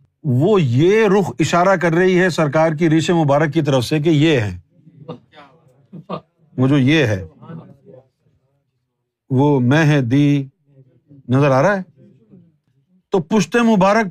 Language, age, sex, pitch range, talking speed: Urdu, 50-69, male, 130-185 Hz, 130 wpm